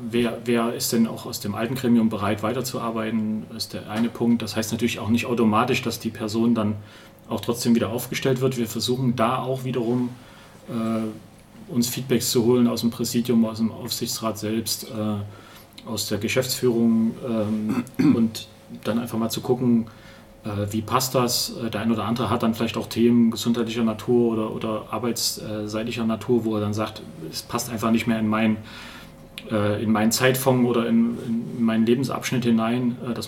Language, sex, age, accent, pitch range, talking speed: German, male, 40-59, German, 110-125 Hz, 175 wpm